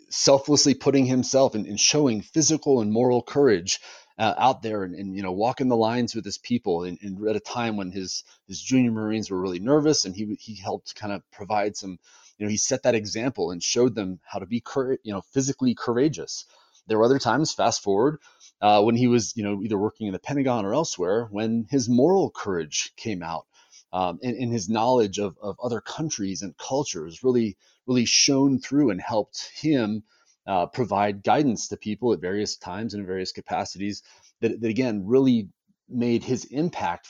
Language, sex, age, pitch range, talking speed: English, male, 30-49, 105-135 Hz, 200 wpm